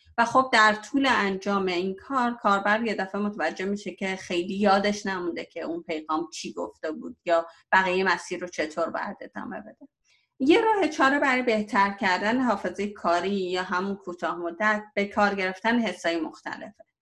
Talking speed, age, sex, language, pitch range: 165 wpm, 30-49, female, Persian, 180-235 Hz